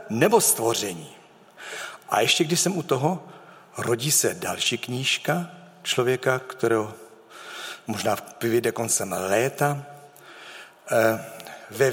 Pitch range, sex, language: 115-170 Hz, male, Czech